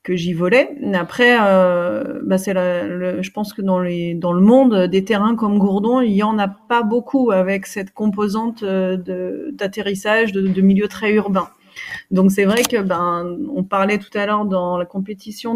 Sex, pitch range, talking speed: female, 185-235 Hz, 195 wpm